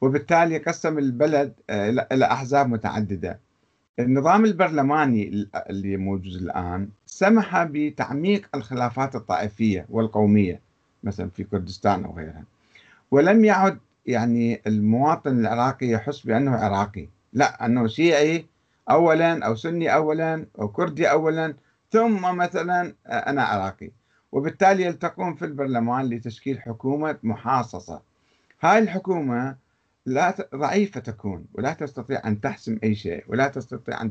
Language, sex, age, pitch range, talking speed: Arabic, male, 50-69, 110-155 Hz, 110 wpm